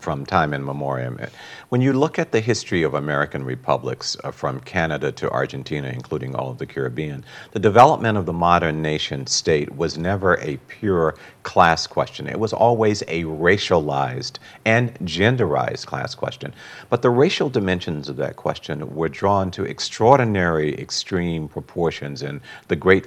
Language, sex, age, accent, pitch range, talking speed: English, male, 50-69, American, 75-100 Hz, 160 wpm